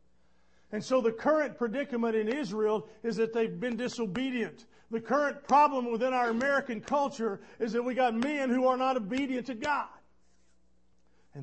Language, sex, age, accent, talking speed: English, male, 50-69, American, 165 wpm